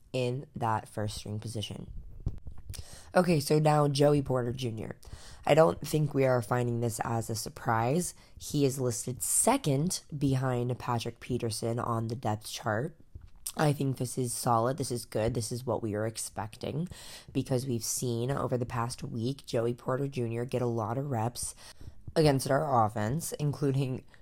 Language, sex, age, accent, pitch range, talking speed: English, female, 20-39, American, 115-140 Hz, 160 wpm